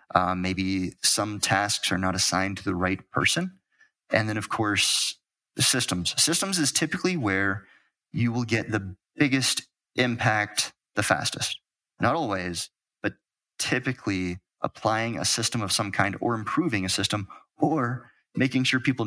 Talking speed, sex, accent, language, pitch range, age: 150 wpm, male, American, English, 100-135 Hz, 30-49